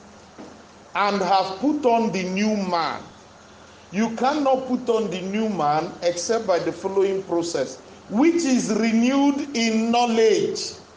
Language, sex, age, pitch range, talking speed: English, male, 50-69, 160-225 Hz, 130 wpm